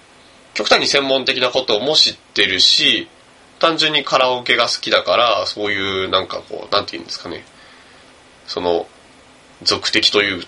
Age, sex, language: 20-39, male, Japanese